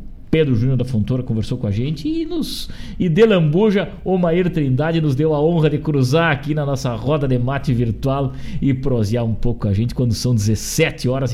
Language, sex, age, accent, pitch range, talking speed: Portuguese, male, 50-69, Brazilian, 125-165 Hz, 205 wpm